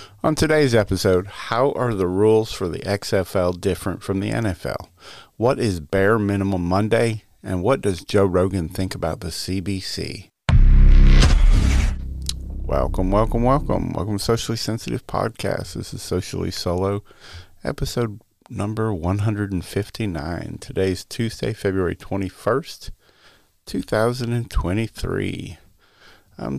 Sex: male